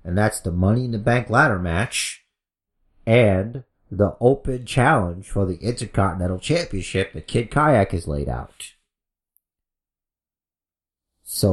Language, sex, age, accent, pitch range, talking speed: English, male, 30-49, American, 90-125 Hz, 125 wpm